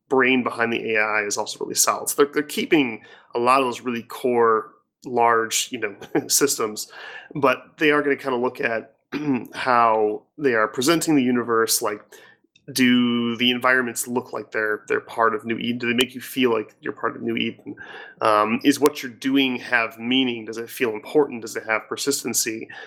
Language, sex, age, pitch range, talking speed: English, male, 30-49, 115-150 Hz, 195 wpm